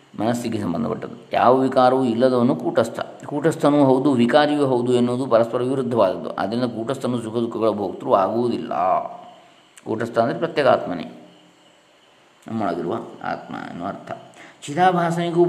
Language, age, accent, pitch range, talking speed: Kannada, 20-39, native, 115-135 Hz, 100 wpm